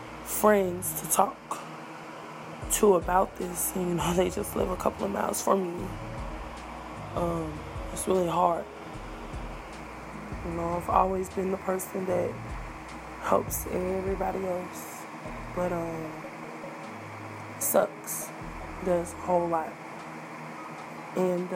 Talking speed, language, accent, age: 110 wpm, English, American, 20-39